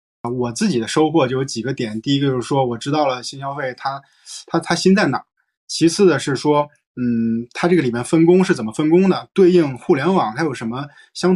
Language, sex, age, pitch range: Chinese, male, 20-39, 120-165 Hz